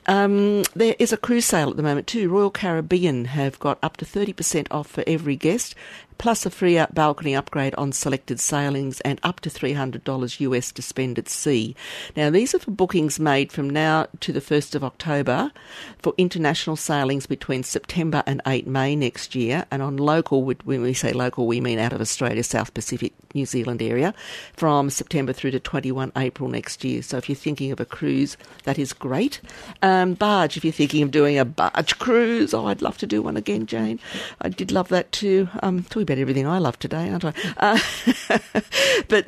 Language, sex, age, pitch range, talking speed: English, female, 50-69, 130-165 Hz, 200 wpm